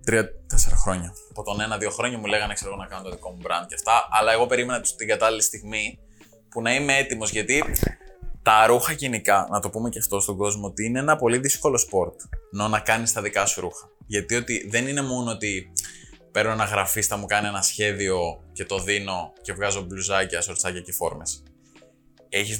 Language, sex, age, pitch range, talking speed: Greek, male, 20-39, 100-130 Hz, 200 wpm